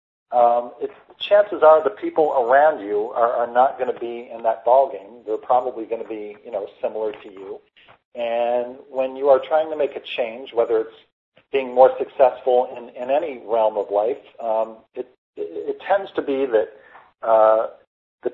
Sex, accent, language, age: male, American, English, 40-59